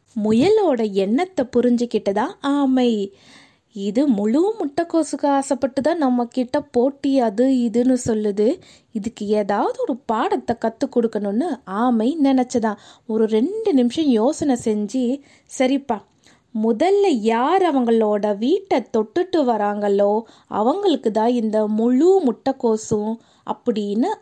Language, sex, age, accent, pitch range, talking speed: Tamil, female, 20-39, native, 235-315 Hz, 90 wpm